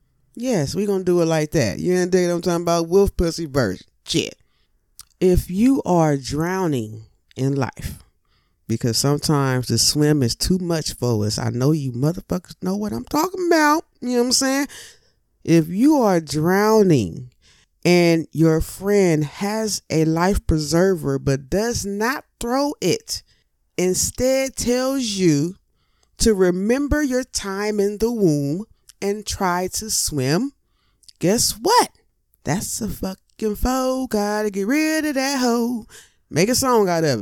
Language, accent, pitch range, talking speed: English, American, 140-200 Hz, 150 wpm